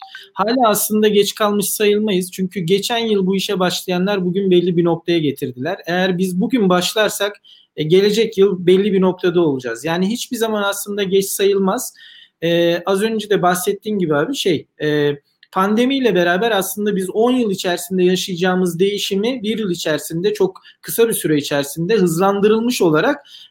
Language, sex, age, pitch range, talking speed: Turkish, male, 40-59, 170-210 Hz, 150 wpm